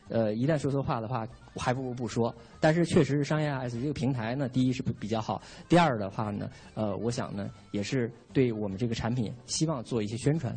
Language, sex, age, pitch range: Chinese, male, 20-39, 115-145 Hz